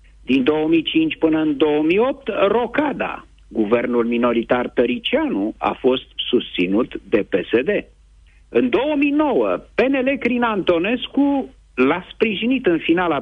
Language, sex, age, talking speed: Romanian, male, 50-69, 105 wpm